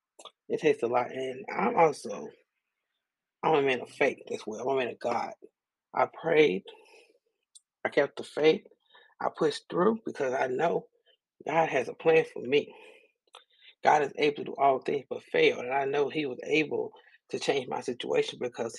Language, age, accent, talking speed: English, 30-49, American, 180 wpm